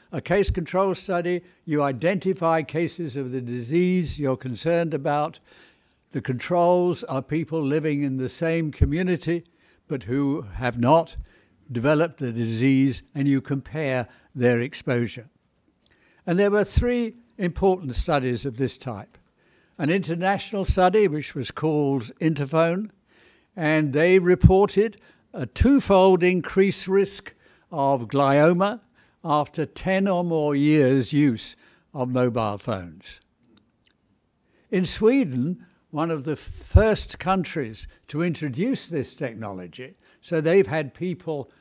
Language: English